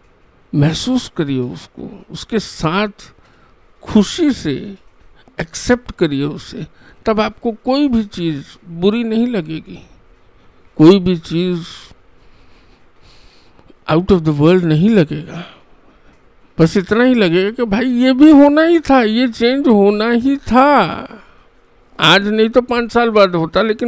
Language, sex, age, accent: English, male, 50-69, Indian